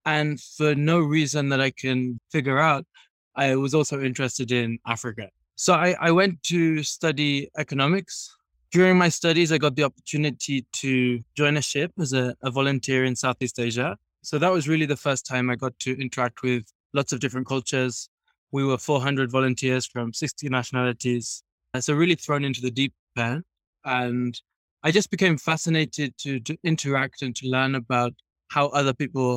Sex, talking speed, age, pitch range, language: male, 175 wpm, 20-39, 125-150 Hz, English